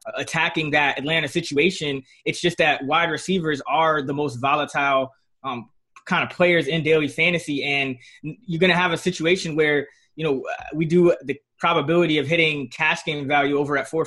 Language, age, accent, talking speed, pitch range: English, 20-39, American, 180 wpm, 145-170 Hz